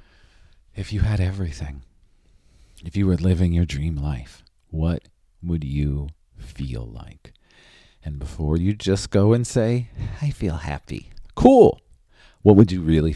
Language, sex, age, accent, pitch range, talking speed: English, male, 40-59, American, 75-110 Hz, 140 wpm